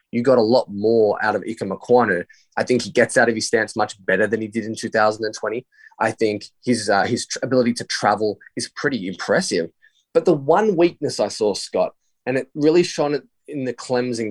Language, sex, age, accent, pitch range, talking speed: English, male, 20-39, Australian, 105-140 Hz, 205 wpm